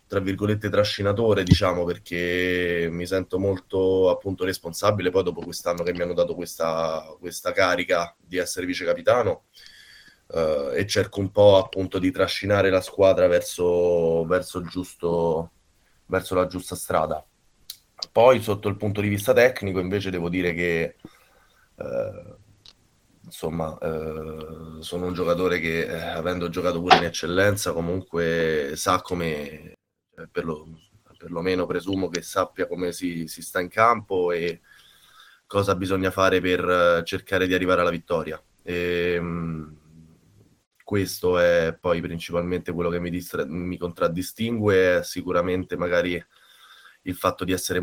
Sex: male